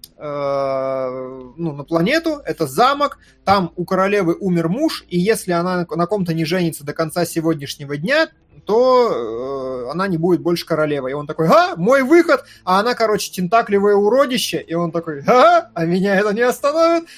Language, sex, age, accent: Russian, male, 20-39, native